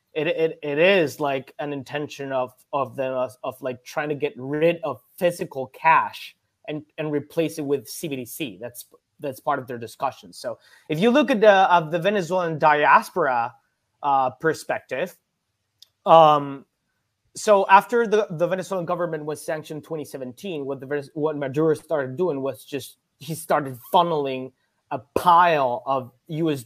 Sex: male